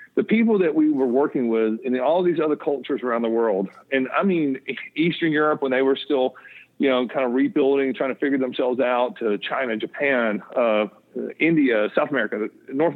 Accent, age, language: American, 50-69, English